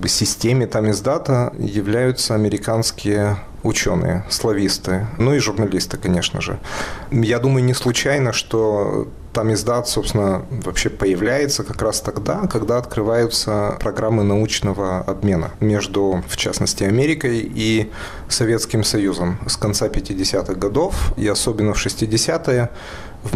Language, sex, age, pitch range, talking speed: Russian, male, 30-49, 95-115 Hz, 115 wpm